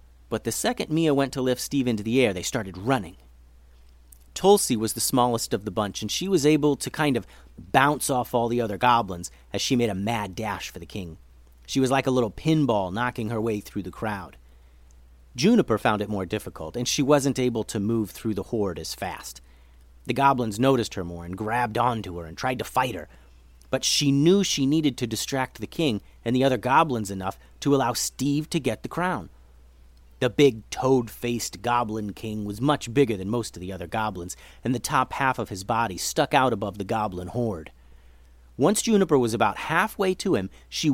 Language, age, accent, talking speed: English, 30-49, American, 205 wpm